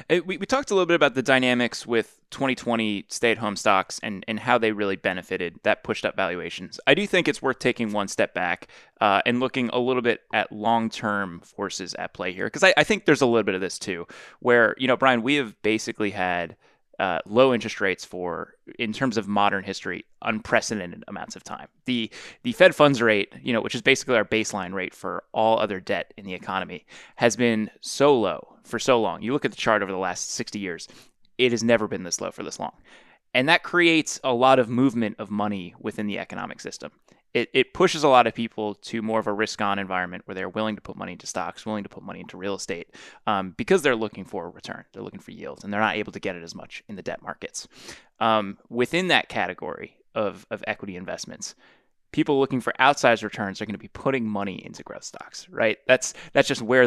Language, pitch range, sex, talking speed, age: English, 105-130 Hz, male, 230 wpm, 20-39